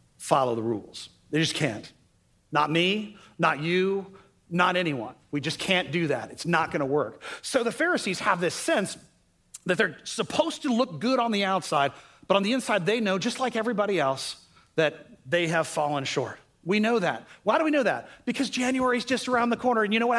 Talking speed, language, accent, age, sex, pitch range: 210 wpm, English, American, 40-59, male, 185-285 Hz